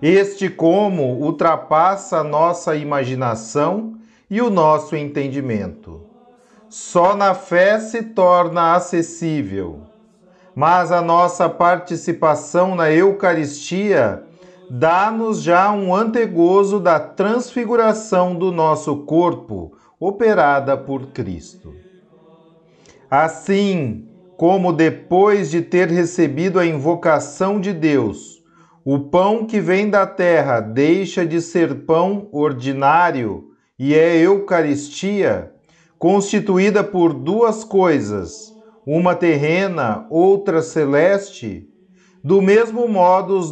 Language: Portuguese